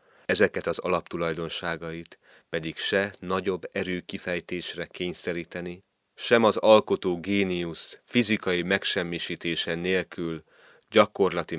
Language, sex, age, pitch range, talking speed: Hungarian, male, 30-49, 80-95 Hz, 90 wpm